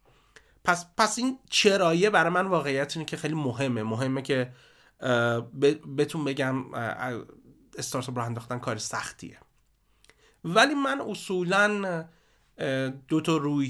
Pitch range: 120-150 Hz